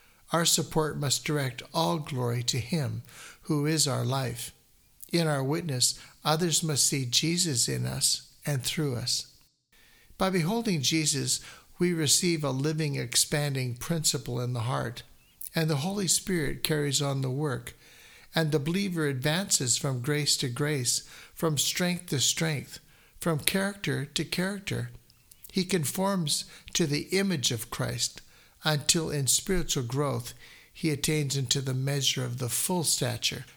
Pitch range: 125-160 Hz